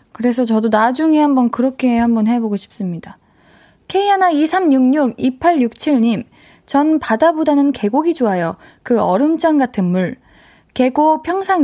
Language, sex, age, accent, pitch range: Korean, female, 20-39, native, 225-330 Hz